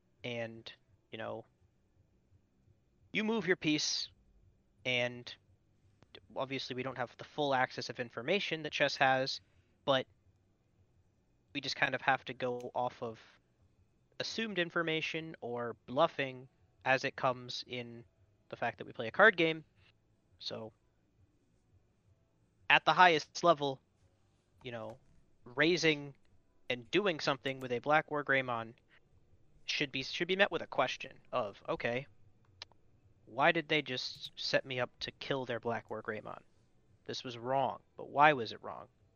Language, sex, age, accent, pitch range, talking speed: English, male, 30-49, American, 110-150 Hz, 145 wpm